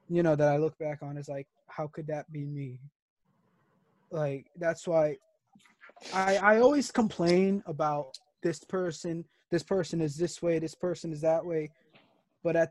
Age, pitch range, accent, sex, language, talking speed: 20-39, 150-180 Hz, American, male, English, 170 wpm